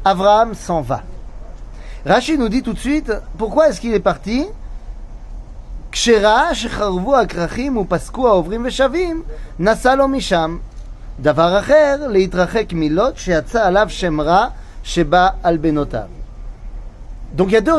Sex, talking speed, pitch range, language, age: male, 65 wpm, 145-215 Hz, French, 30-49